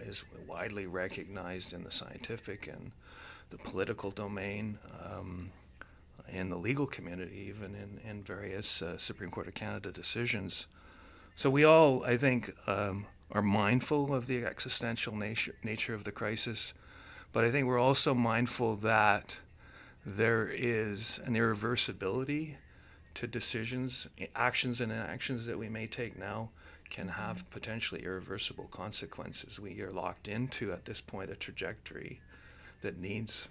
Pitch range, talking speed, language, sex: 95-120 Hz, 140 wpm, English, male